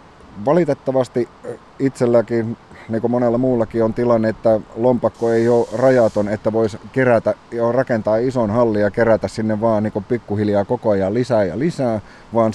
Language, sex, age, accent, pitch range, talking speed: Finnish, male, 30-49, native, 100-120 Hz, 155 wpm